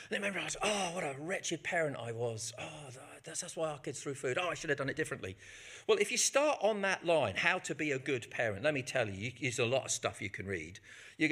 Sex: male